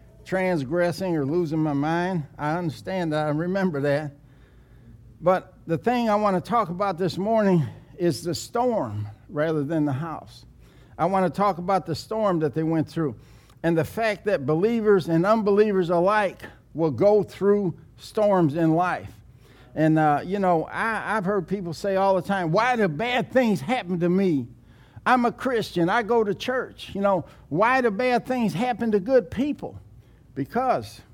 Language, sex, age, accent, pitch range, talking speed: English, male, 60-79, American, 140-200 Hz, 170 wpm